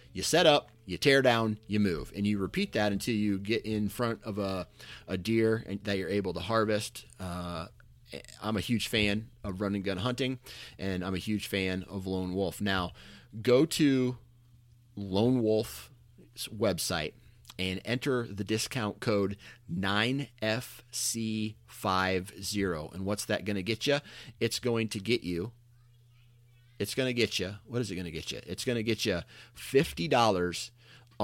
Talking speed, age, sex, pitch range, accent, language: 165 wpm, 30-49, male, 95-115 Hz, American, English